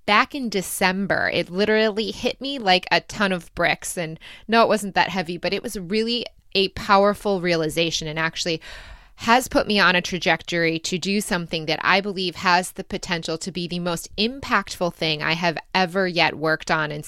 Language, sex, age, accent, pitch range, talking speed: English, female, 20-39, American, 165-210 Hz, 195 wpm